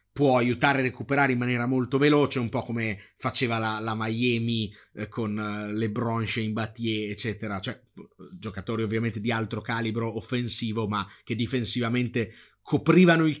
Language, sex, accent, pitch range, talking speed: Italian, male, native, 115-150 Hz, 155 wpm